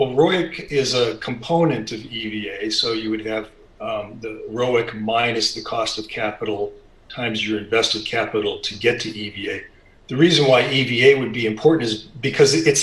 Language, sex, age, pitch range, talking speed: English, male, 40-59, 110-140 Hz, 175 wpm